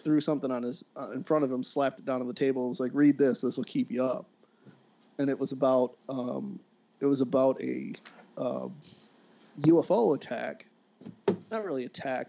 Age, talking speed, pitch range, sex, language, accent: 30-49, 195 wpm, 130-150 Hz, male, English, American